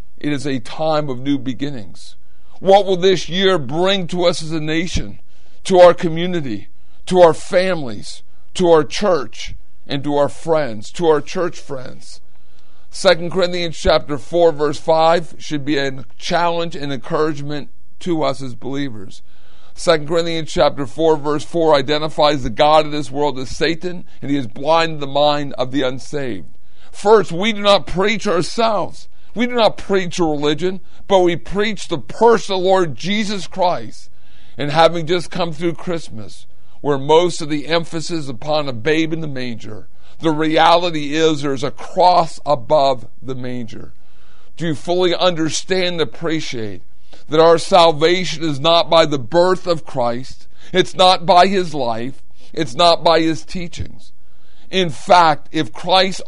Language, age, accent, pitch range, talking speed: English, 50-69, American, 140-175 Hz, 160 wpm